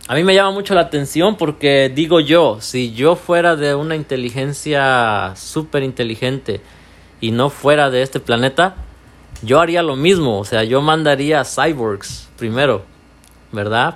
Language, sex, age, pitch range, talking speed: English, male, 40-59, 110-145 Hz, 150 wpm